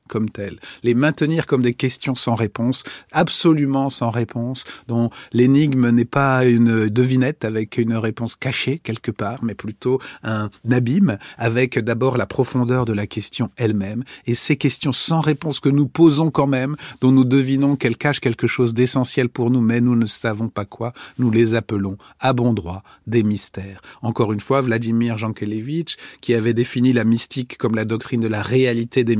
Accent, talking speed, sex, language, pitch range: French, 180 wpm, male, French, 115-140 Hz